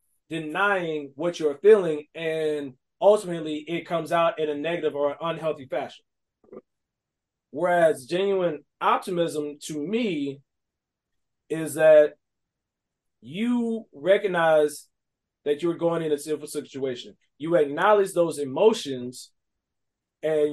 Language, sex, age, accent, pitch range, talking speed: English, male, 20-39, American, 150-200 Hz, 105 wpm